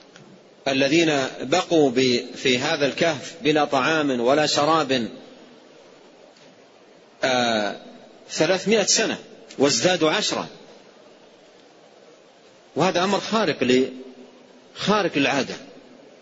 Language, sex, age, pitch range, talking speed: Arabic, male, 40-59, 135-175 Hz, 65 wpm